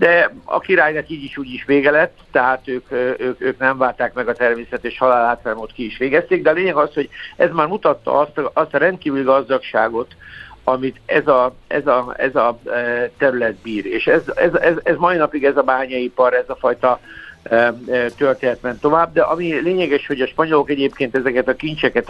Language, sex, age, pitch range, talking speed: Hungarian, male, 60-79, 120-145 Hz, 195 wpm